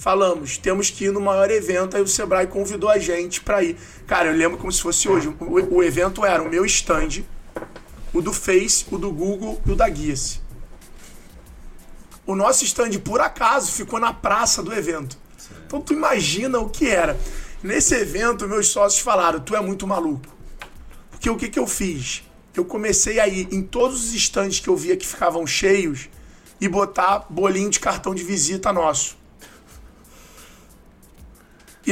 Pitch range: 190-245 Hz